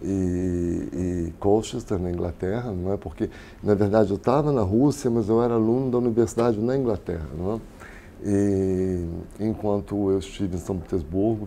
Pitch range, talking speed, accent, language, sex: 90-110 Hz, 160 wpm, Brazilian, Portuguese, male